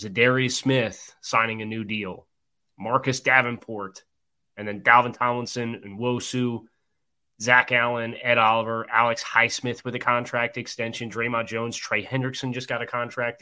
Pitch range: 105-125 Hz